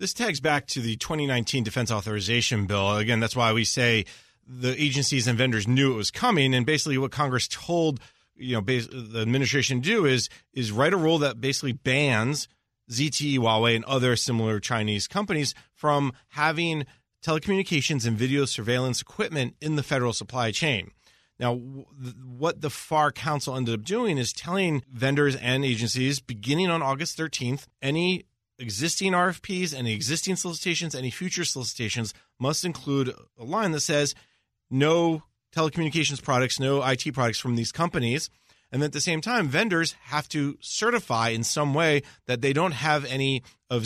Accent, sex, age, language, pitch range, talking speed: American, male, 30-49, English, 120-155 Hz, 165 wpm